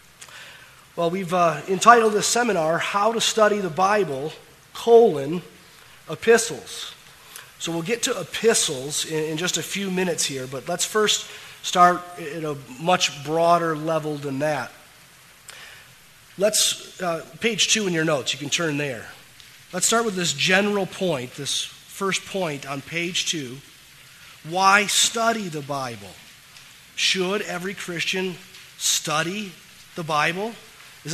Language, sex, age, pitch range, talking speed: English, male, 30-49, 150-185 Hz, 135 wpm